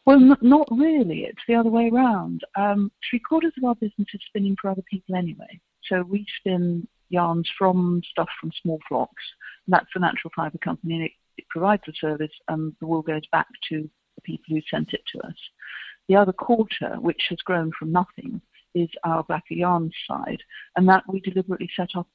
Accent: British